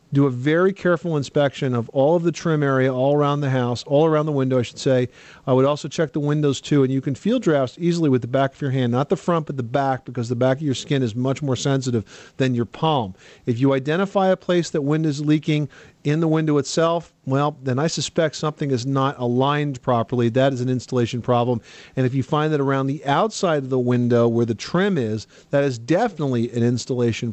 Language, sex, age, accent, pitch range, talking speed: English, male, 40-59, American, 130-160 Hz, 235 wpm